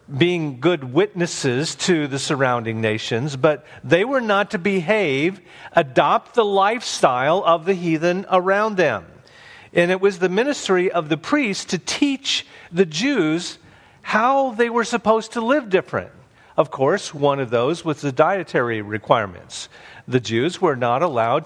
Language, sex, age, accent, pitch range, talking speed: English, male, 50-69, American, 130-185 Hz, 150 wpm